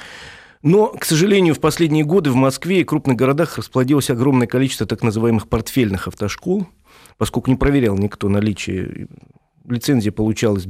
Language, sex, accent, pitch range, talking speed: Russian, male, native, 105-145 Hz, 140 wpm